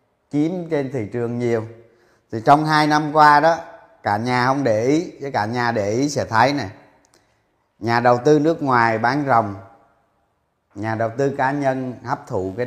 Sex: male